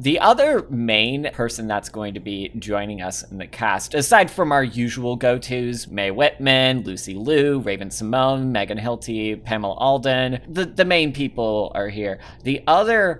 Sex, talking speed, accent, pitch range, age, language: male, 165 wpm, American, 105-135 Hz, 20-39, English